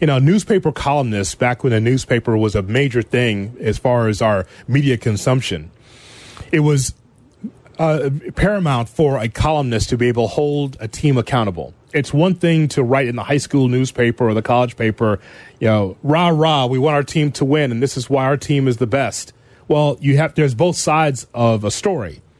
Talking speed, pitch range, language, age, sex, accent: 200 wpm, 120-155 Hz, English, 30-49, male, American